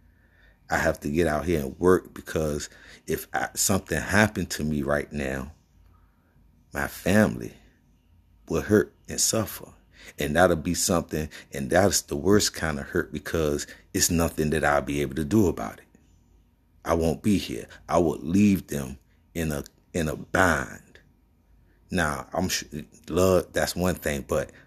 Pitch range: 75-85 Hz